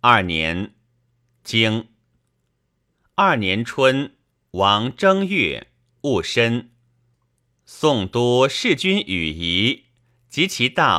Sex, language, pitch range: male, Chinese, 110-130 Hz